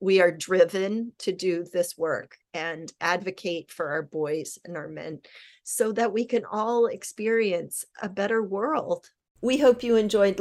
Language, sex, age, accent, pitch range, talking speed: English, female, 40-59, American, 180-210 Hz, 160 wpm